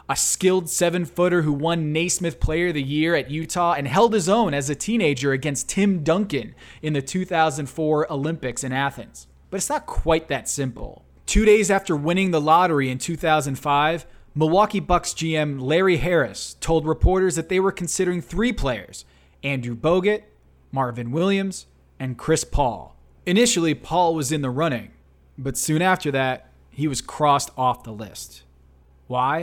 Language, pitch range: English, 130-175 Hz